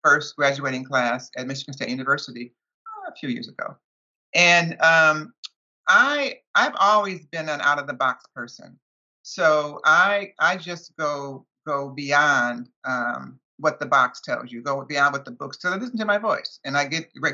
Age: 50-69